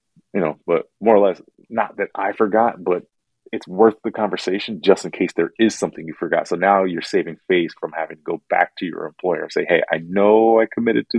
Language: English